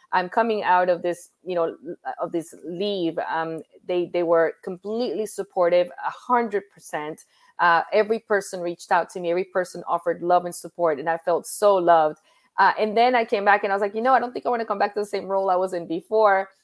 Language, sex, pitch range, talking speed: English, female, 170-205 Hz, 225 wpm